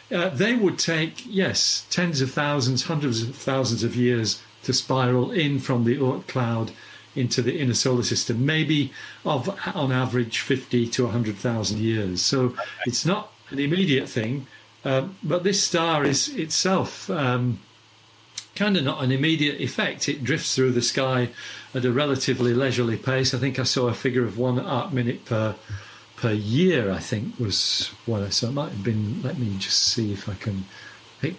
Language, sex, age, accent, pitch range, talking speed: English, male, 50-69, British, 115-135 Hz, 180 wpm